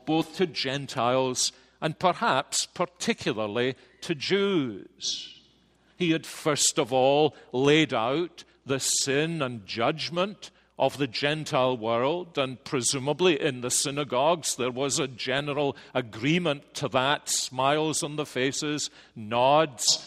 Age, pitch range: 50-69, 130-160 Hz